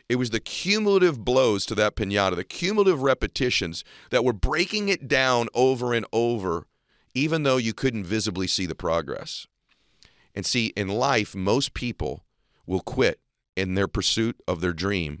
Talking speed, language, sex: 160 wpm, English, male